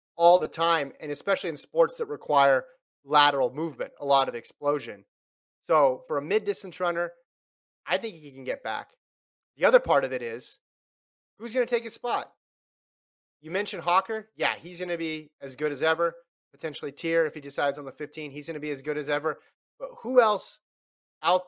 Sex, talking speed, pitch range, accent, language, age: male, 200 wpm, 150-220 Hz, American, English, 30-49